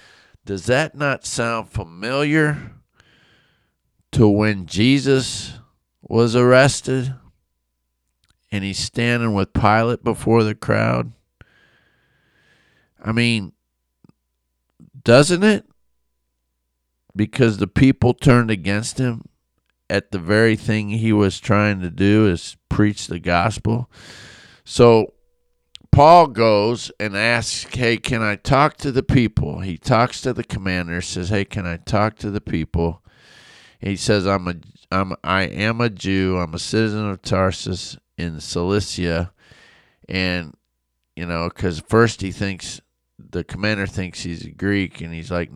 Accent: American